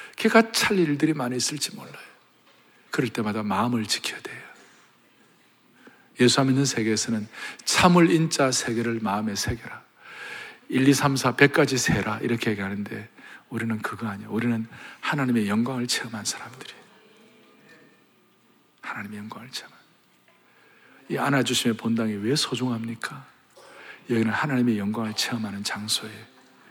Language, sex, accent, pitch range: Korean, male, native, 125-195 Hz